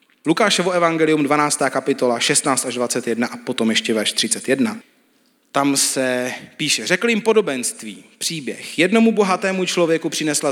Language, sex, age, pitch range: Czech, male, 30-49, 135-225 Hz